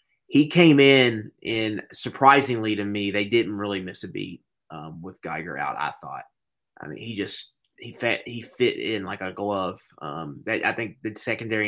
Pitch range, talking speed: 105-120 Hz, 190 wpm